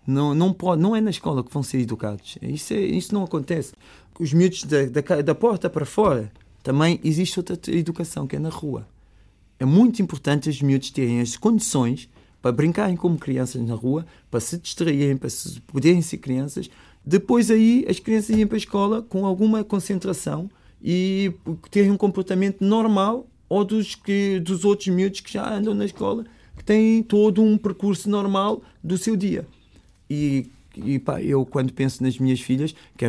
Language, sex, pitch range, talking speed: Portuguese, male, 120-185 Hz, 180 wpm